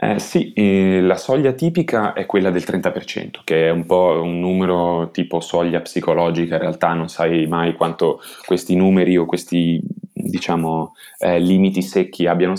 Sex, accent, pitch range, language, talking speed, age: male, native, 80-95 Hz, Italian, 160 wpm, 20-39